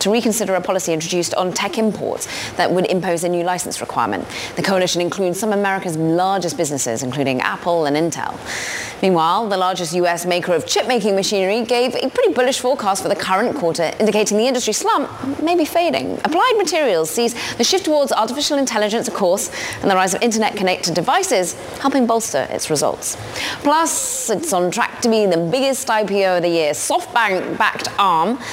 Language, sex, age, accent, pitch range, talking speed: English, female, 20-39, British, 170-235 Hz, 175 wpm